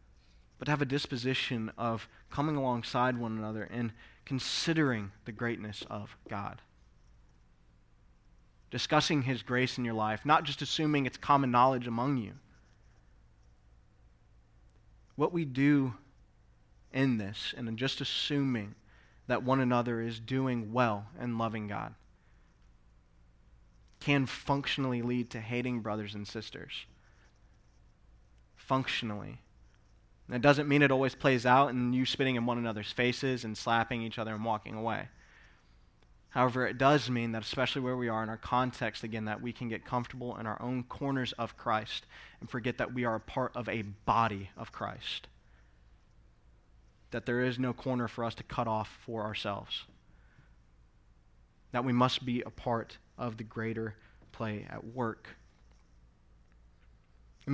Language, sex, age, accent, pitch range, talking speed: English, male, 20-39, American, 105-130 Hz, 145 wpm